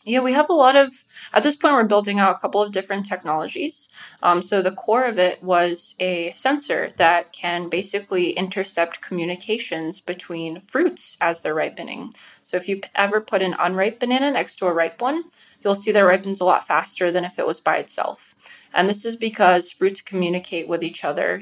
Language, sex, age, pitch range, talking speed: English, female, 20-39, 170-200 Hz, 200 wpm